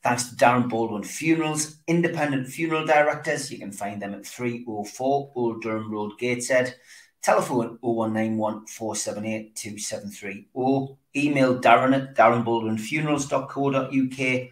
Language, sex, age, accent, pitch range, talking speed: English, male, 40-59, British, 105-140 Hz, 110 wpm